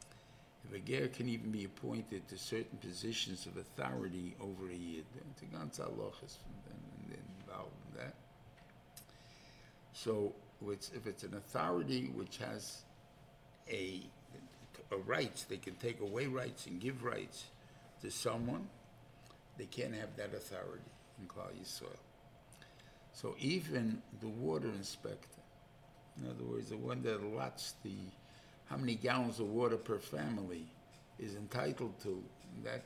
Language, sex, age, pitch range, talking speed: English, male, 60-79, 100-135 Hz, 120 wpm